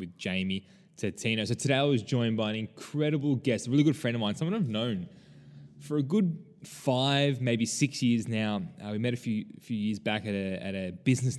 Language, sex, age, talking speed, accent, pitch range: English, male, 10-29, 215 wpm, Australian, 105-135 Hz